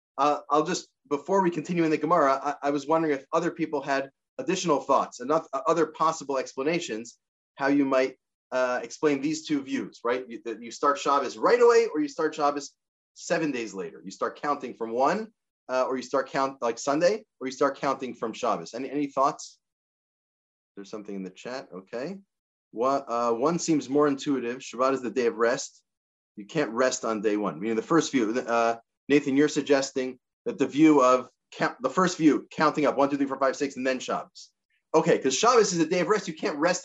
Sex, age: male, 30-49